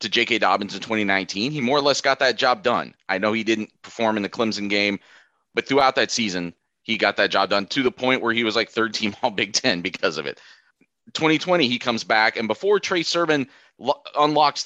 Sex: male